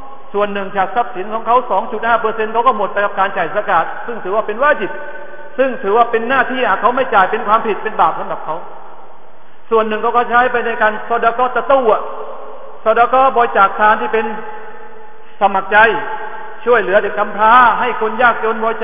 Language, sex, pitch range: Thai, male, 190-235 Hz